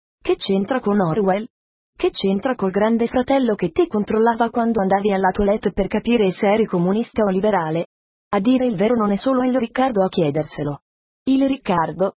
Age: 30-49